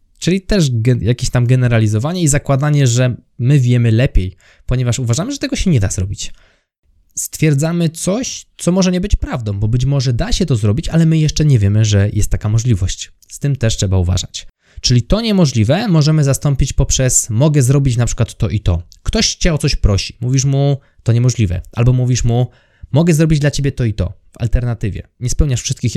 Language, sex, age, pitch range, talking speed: Polish, male, 20-39, 95-140 Hz, 195 wpm